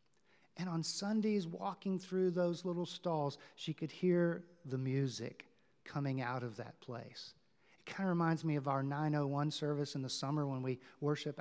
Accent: American